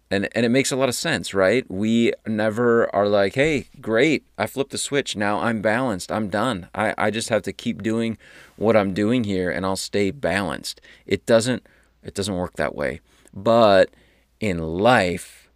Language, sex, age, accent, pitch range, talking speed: English, male, 30-49, American, 90-105 Hz, 190 wpm